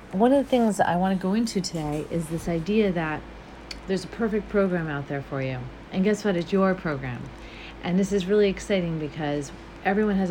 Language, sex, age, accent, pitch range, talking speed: English, female, 40-59, American, 155-195 Hz, 210 wpm